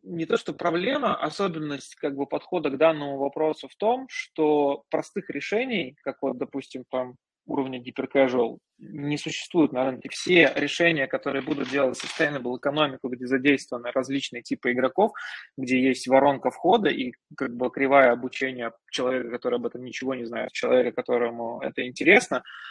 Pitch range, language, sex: 125-155 Hz, Russian, male